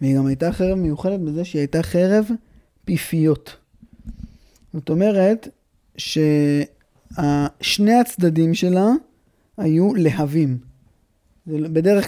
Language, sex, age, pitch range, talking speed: Hebrew, male, 20-39, 145-185 Hz, 95 wpm